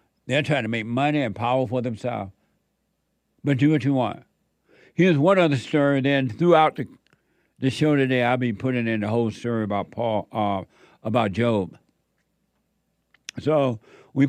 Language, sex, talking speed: English, male, 160 wpm